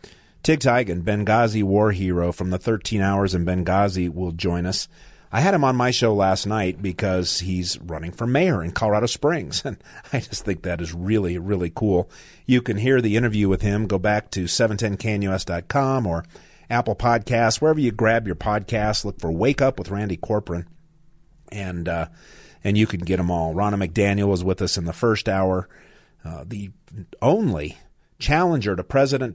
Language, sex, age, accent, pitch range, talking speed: English, male, 40-59, American, 90-120 Hz, 180 wpm